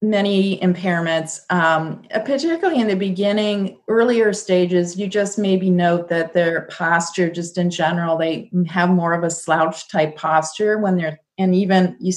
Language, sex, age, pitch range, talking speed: English, female, 30-49, 165-195 Hz, 160 wpm